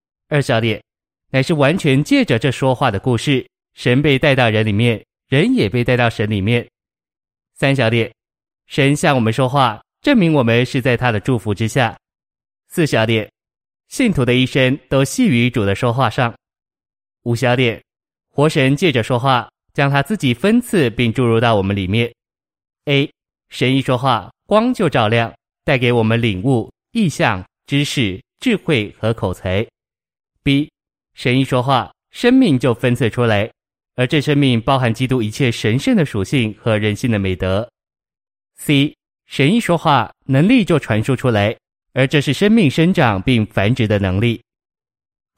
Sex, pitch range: male, 110-140 Hz